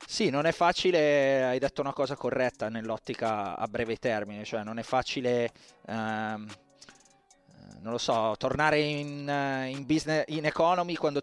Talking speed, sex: 150 wpm, male